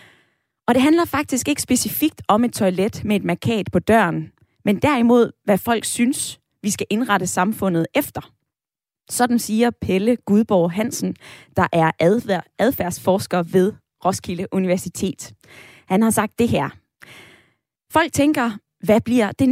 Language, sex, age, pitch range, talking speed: Danish, female, 20-39, 185-240 Hz, 140 wpm